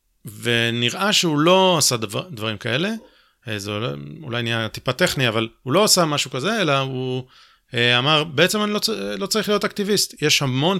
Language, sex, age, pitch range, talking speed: Hebrew, male, 30-49, 120-180 Hz, 170 wpm